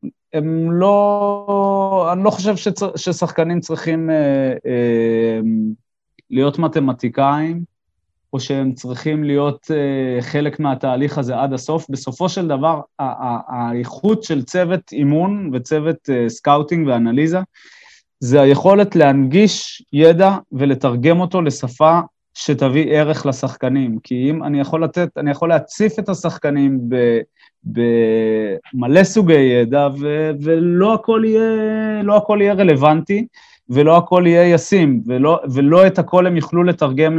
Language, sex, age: Hebrew, male, 30-49